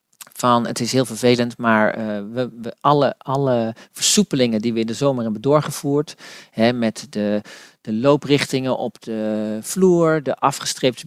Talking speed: 155 wpm